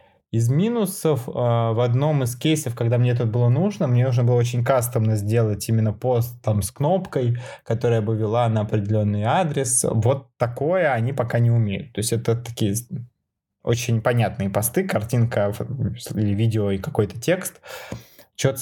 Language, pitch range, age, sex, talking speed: Russian, 115-140 Hz, 20-39, male, 155 wpm